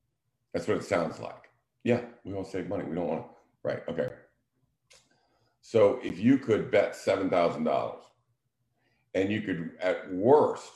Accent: American